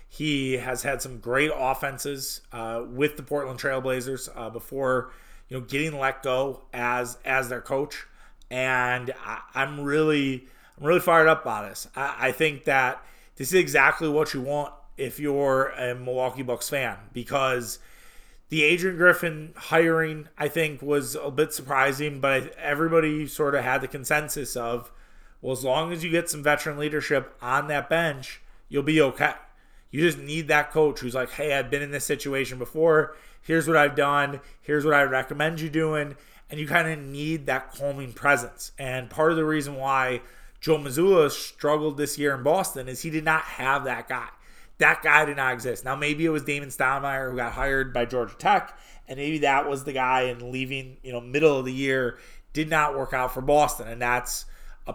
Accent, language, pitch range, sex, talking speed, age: American, English, 130-150 Hz, male, 190 wpm, 30-49